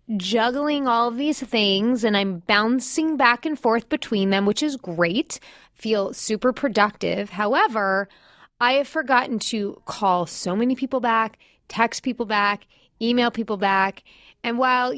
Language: English